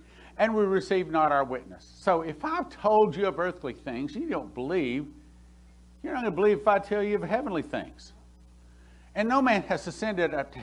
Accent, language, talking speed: American, English, 205 wpm